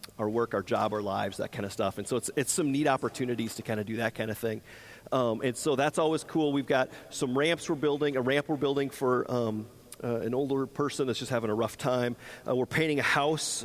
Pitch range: 120-150 Hz